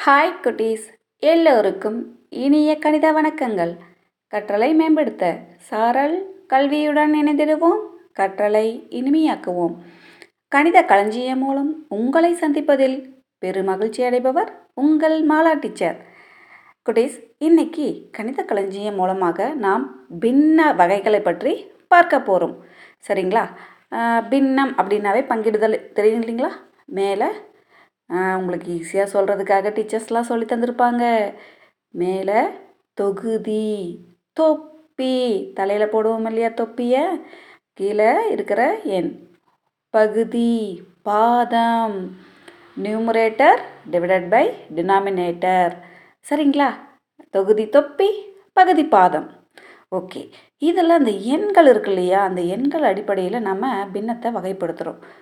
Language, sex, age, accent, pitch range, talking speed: Tamil, female, 30-49, native, 200-300 Hz, 85 wpm